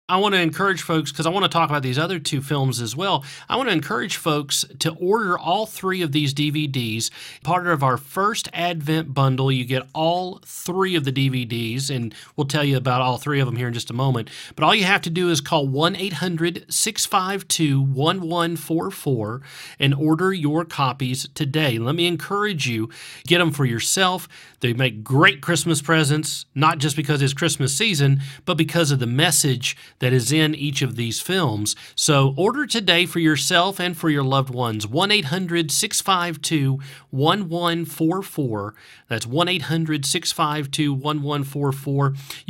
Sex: male